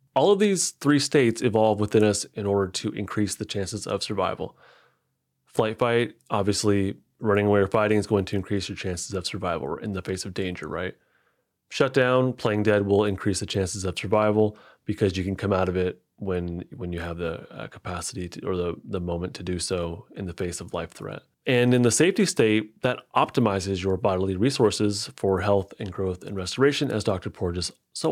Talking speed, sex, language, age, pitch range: 205 wpm, male, English, 30-49, 95-120 Hz